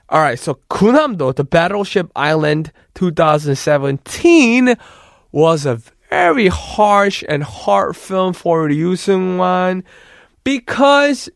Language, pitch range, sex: Korean, 155-185 Hz, male